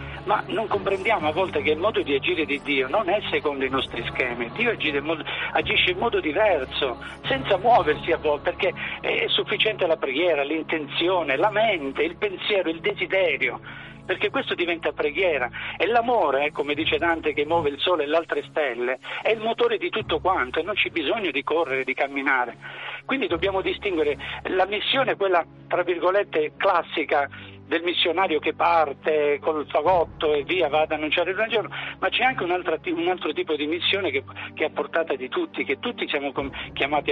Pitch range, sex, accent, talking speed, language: 150-225 Hz, male, native, 185 wpm, Italian